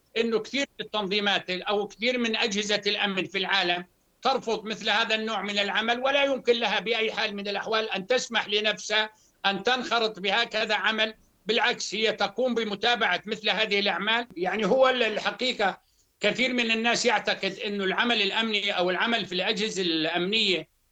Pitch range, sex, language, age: 195-230 Hz, male, Arabic, 60-79